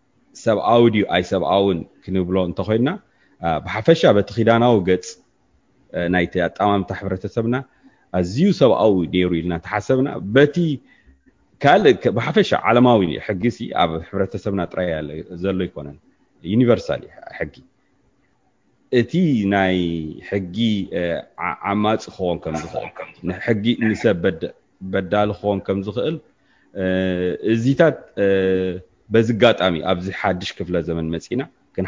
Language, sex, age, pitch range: English, male, 30-49, 85-110 Hz